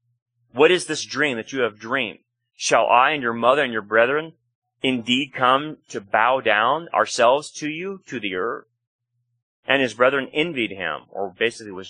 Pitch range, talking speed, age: 120-150 Hz, 175 wpm, 30-49